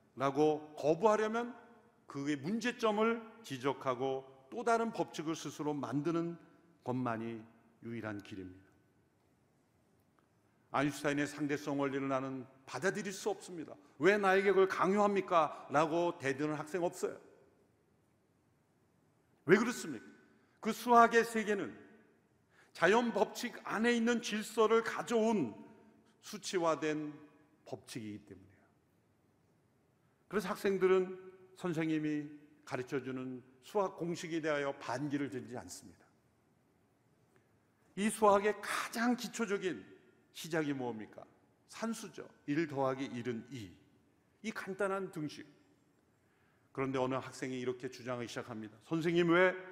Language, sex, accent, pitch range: Korean, male, native, 135-200 Hz